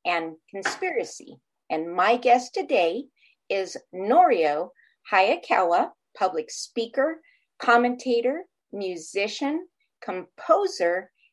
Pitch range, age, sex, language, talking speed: 195-275 Hz, 50-69, female, English, 75 wpm